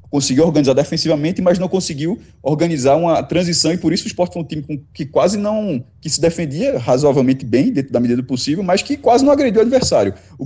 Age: 20-39